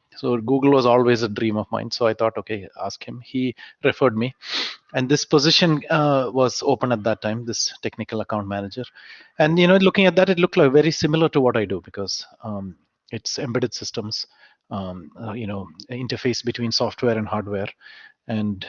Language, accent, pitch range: Malayalam, native, 110-135 Hz